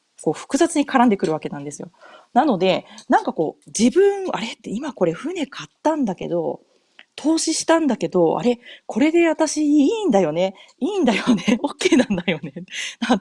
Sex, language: female, Japanese